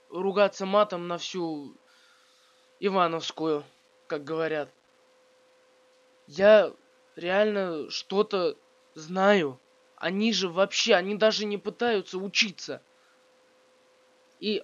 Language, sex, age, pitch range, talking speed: Russian, male, 20-39, 170-255 Hz, 80 wpm